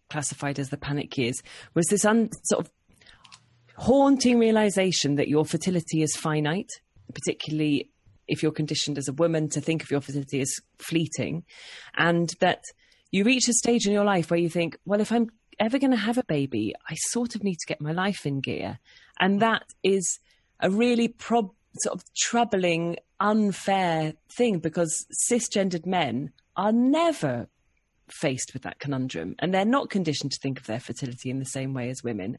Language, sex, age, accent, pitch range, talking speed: English, female, 30-49, British, 145-205 Hz, 175 wpm